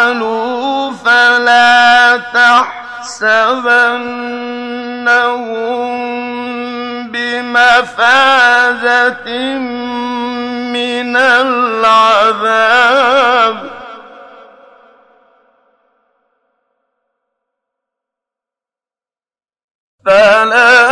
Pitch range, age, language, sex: 240-245 Hz, 50-69, Arabic, male